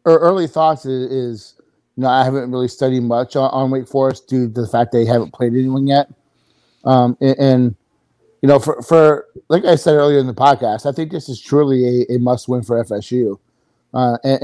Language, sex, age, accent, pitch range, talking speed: English, male, 30-49, American, 120-135 Hz, 210 wpm